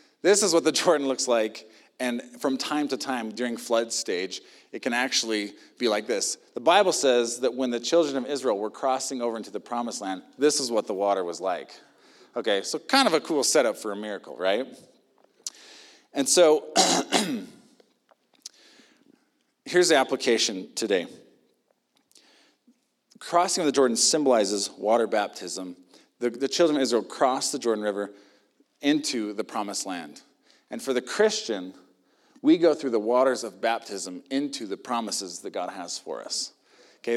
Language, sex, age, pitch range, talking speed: English, male, 40-59, 110-175 Hz, 165 wpm